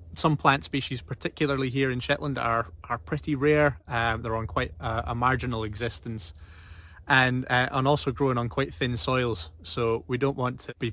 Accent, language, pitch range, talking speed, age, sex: British, English, 105-135 Hz, 185 wpm, 20-39, male